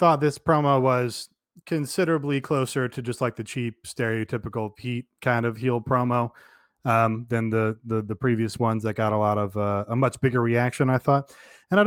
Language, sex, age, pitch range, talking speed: English, male, 20-39, 120-160 Hz, 190 wpm